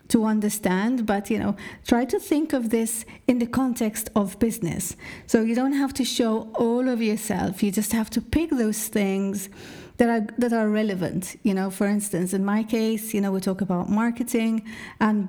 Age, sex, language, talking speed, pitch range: 40-59, female, English, 190 wpm, 195-235 Hz